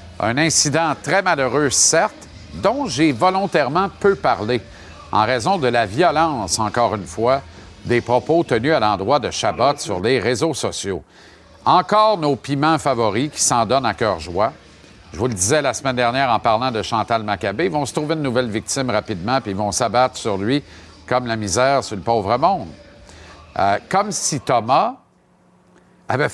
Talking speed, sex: 170 wpm, male